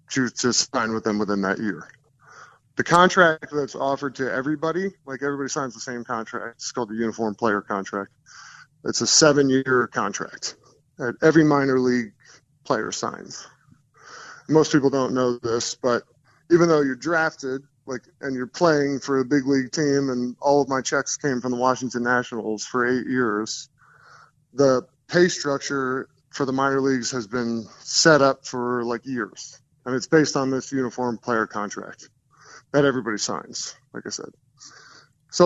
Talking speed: 160 wpm